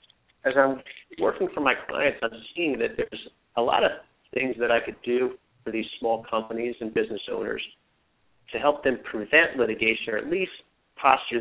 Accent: American